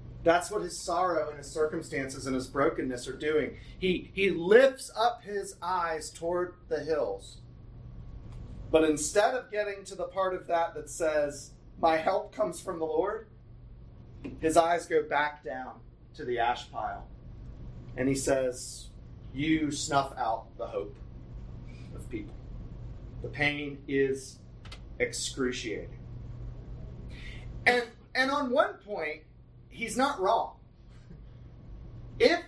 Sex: male